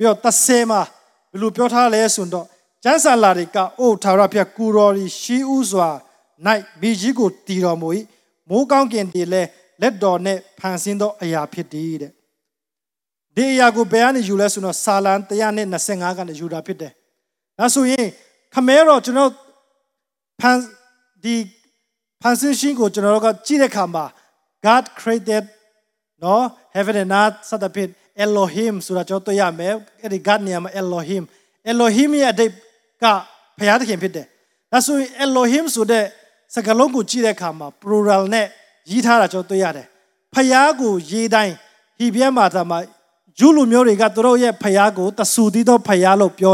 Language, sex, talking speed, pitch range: English, male, 120 wpm, 190-240 Hz